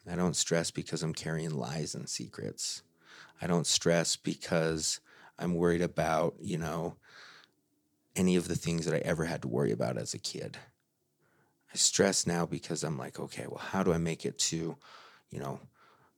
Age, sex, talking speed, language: 30-49, male, 180 wpm, English